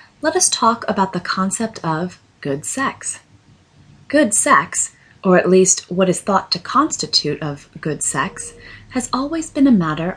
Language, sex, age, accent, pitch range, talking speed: English, female, 30-49, American, 165-230 Hz, 160 wpm